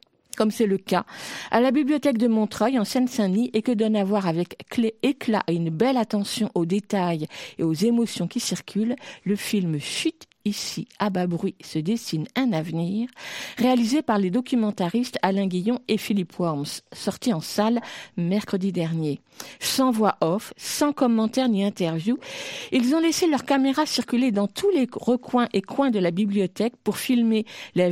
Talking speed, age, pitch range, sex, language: 170 wpm, 50-69, 180-245 Hz, female, French